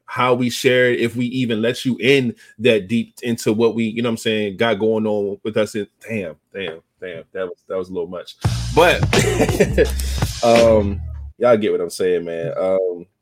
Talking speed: 205 wpm